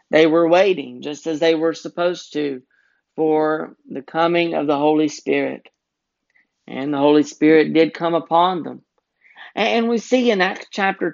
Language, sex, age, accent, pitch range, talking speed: English, male, 50-69, American, 150-190 Hz, 160 wpm